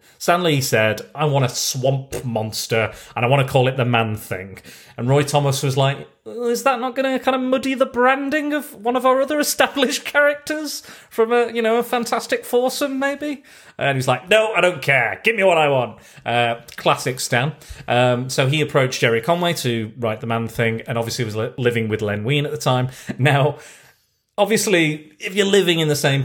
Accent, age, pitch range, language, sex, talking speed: British, 30-49, 125-205 Hz, English, male, 205 wpm